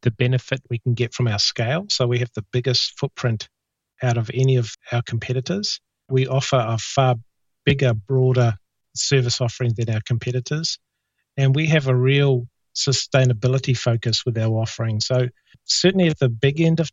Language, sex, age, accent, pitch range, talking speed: English, male, 40-59, Australian, 120-135 Hz, 170 wpm